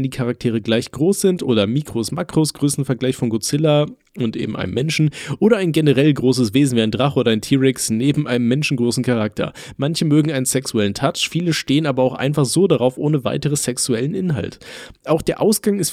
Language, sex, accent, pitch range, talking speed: German, male, German, 125-155 Hz, 190 wpm